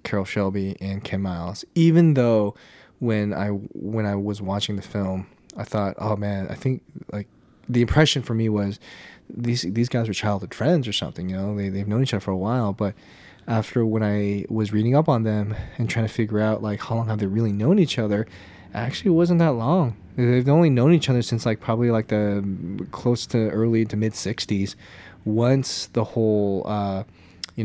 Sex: male